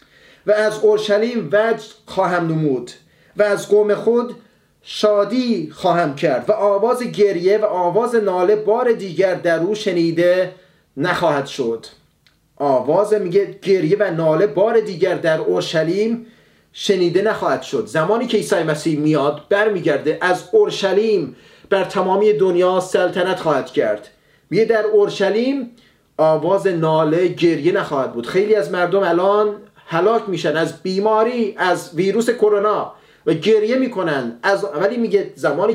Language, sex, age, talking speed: English, male, 30-49, 135 wpm